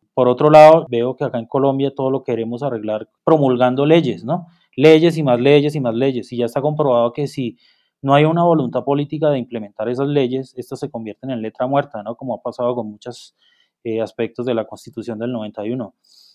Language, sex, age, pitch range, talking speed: Spanish, male, 20-39, 115-140 Hz, 205 wpm